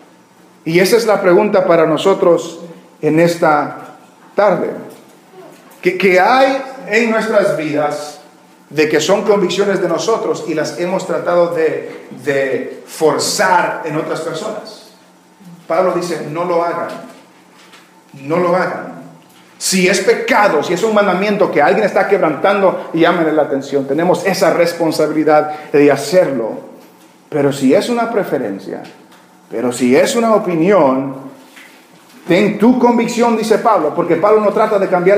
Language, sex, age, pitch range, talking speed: English, male, 40-59, 165-215 Hz, 135 wpm